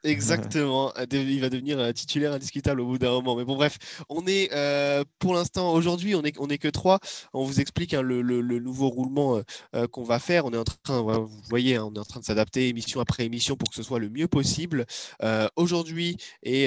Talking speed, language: 230 wpm, French